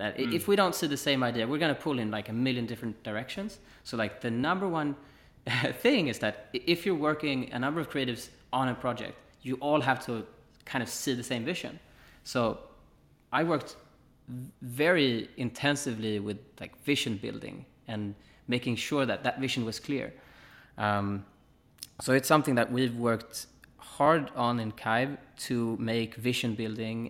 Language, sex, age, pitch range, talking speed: English, male, 20-39, 110-130 Hz, 170 wpm